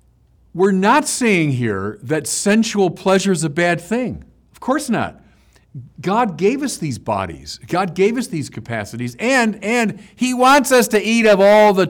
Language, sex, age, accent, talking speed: English, male, 50-69, American, 170 wpm